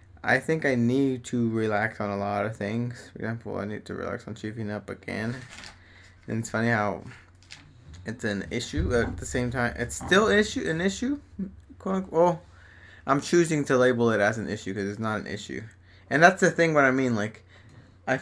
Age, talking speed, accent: 20-39, 200 wpm, American